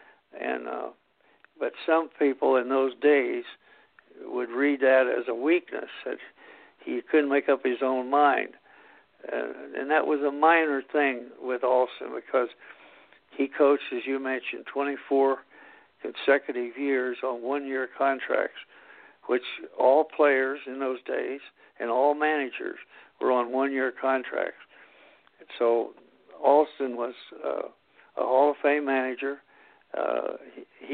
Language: English